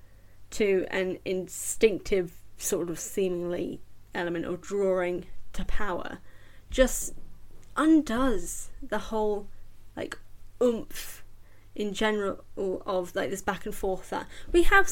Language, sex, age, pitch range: English, female, 10-29, 190-275 Hz